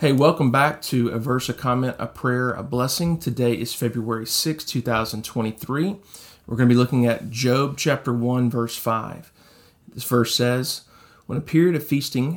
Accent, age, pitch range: American, 40-59, 115-140 Hz